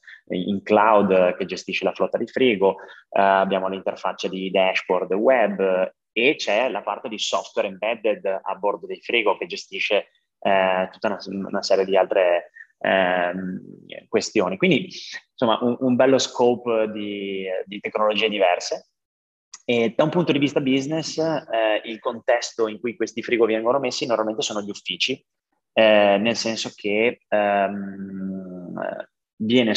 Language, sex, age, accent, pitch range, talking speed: Italian, male, 20-39, native, 100-120 Hz, 145 wpm